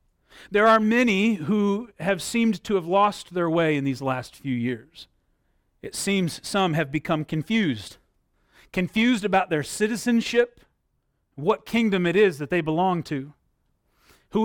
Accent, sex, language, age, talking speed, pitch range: American, male, English, 40-59, 145 wpm, 165-215 Hz